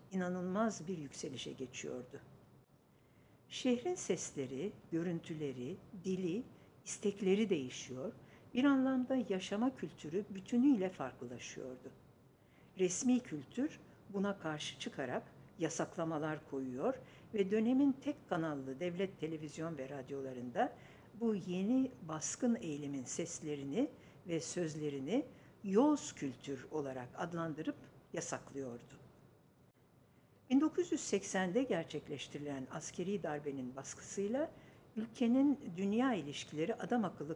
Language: English